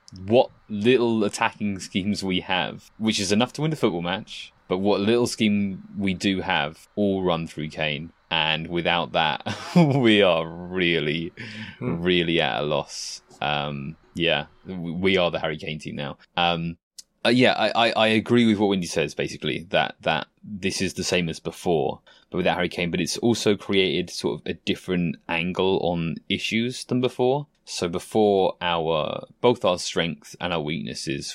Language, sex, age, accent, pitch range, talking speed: English, male, 20-39, British, 85-105 Hz, 170 wpm